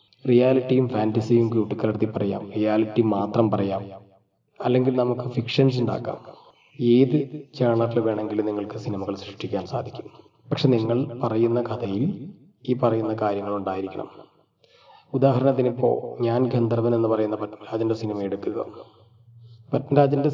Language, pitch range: Malayalam, 110-125 Hz